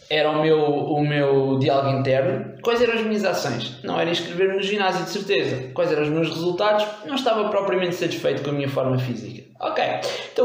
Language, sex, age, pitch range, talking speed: English, male, 20-39, 160-235 Hz, 195 wpm